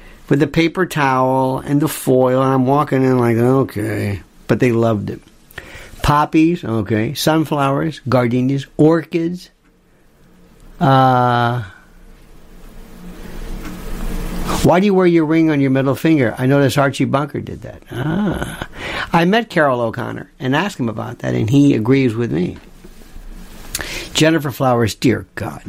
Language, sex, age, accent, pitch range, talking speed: English, male, 60-79, American, 125-160 Hz, 135 wpm